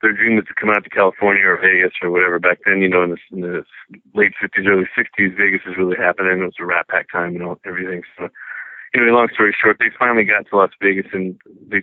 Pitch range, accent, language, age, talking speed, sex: 95-105 Hz, American, English, 40-59, 265 wpm, male